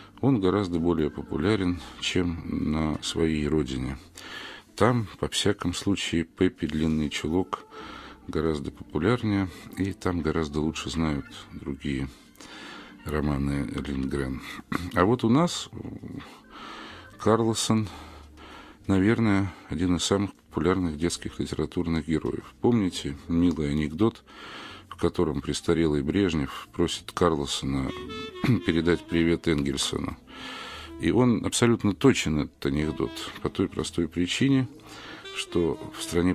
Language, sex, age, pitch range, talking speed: Russian, male, 50-69, 75-110 Hz, 105 wpm